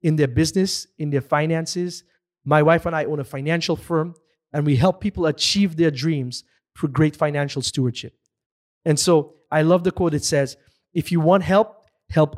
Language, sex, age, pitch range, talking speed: English, male, 20-39, 140-170 Hz, 185 wpm